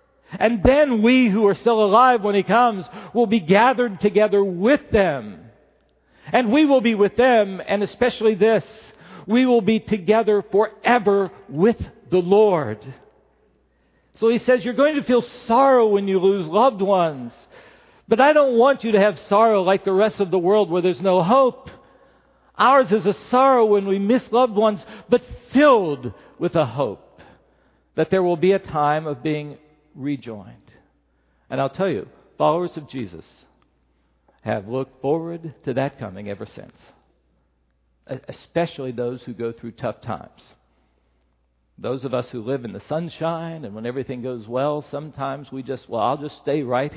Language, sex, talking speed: English, male, 165 wpm